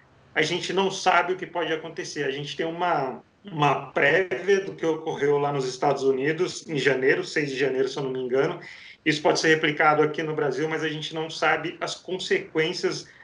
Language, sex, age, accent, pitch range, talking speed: Portuguese, male, 40-59, Brazilian, 150-190 Hz, 205 wpm